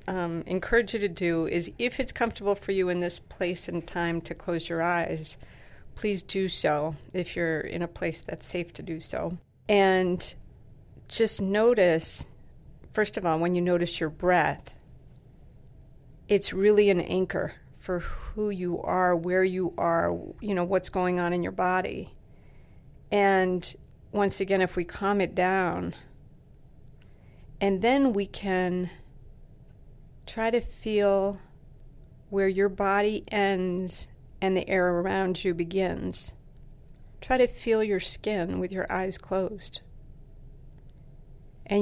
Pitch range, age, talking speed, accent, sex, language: 175-205 Hz, 50-69, 140 wpm, American, female, English